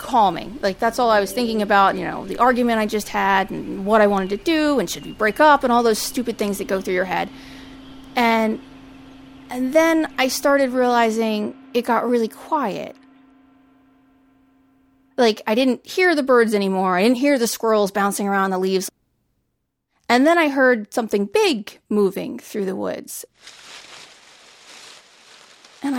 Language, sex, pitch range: English, female, 200-265 Hz